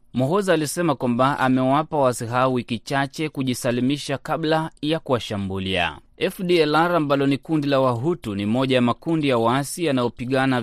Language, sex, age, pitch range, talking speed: Swahili, male, 30-49, 115-135 Hz, 135 wpm